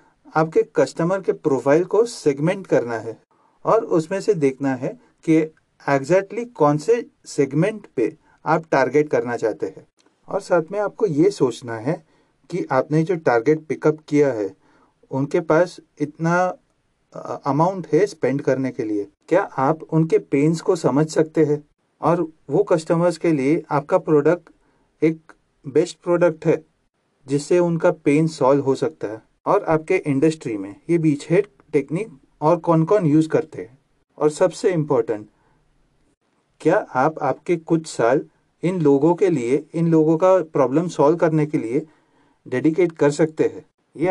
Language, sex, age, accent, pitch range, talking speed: Hindi, male, 40-59, native, 145-175 Hz, 155 wpm